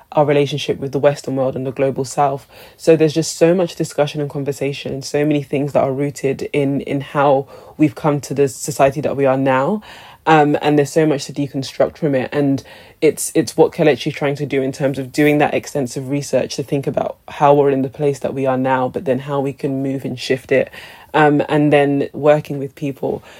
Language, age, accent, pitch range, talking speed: English, 20-39, British, 135-150 Hz, 225 wpm